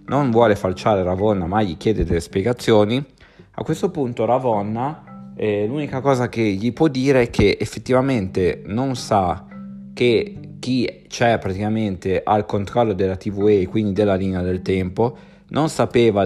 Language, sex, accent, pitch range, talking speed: Italian, male, native, 95-125 Hz, 150 wpm